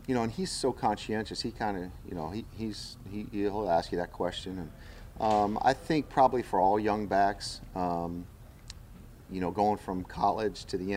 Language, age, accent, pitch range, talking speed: English, 40-59, American, 95-110 Hz, 195 wpm